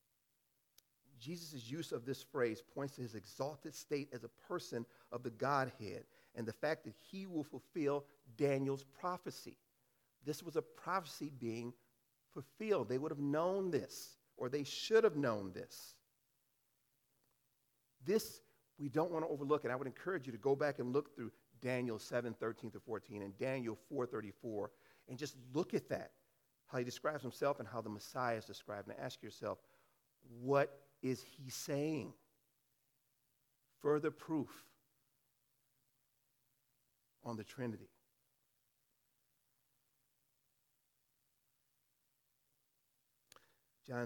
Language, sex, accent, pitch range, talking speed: English, male, American, 120-140 Hz, 130 wpm